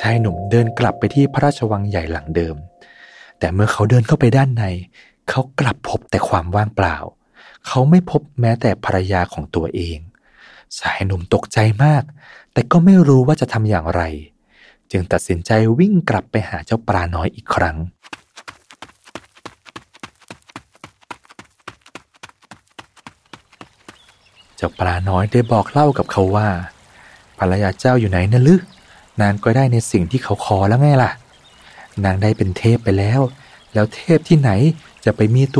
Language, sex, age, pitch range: Thai, male, 20-39, 95-130 Hz